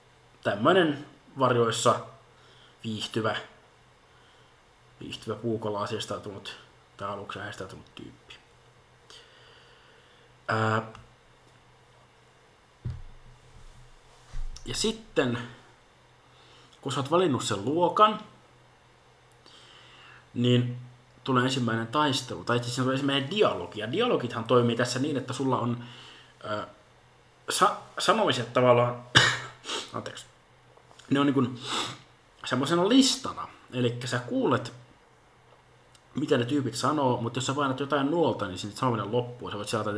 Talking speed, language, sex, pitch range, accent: 95 wpm, Finnish, male, 110-130 Hz, native